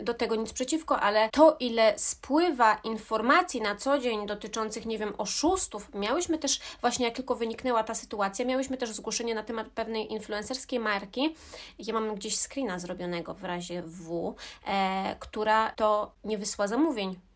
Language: Polish